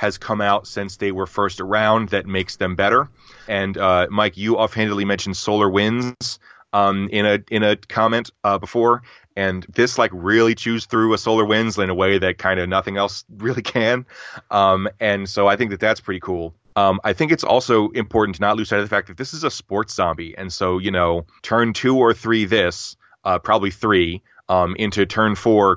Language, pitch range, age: English, 95-110 Hz, 30-49